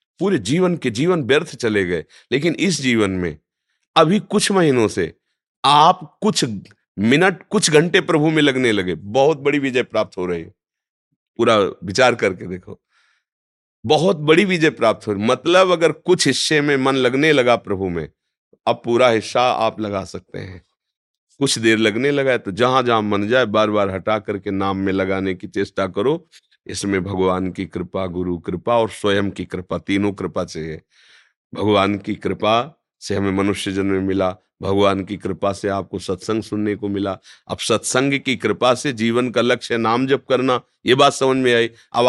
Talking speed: 175 wpm